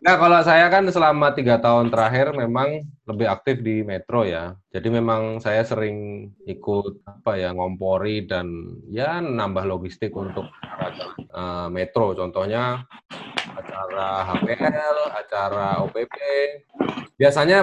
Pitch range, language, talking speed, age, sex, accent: 95-130 Hz, Indonesian, 115 wpm, 20-39, male, native